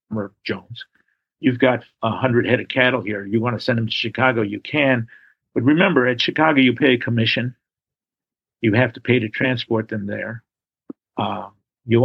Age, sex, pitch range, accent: 50-69, male, 105-125 Hz, American